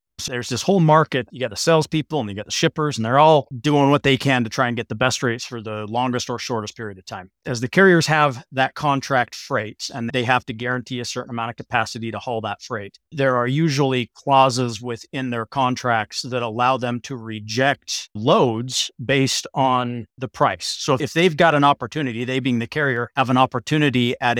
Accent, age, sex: American, 40-59, male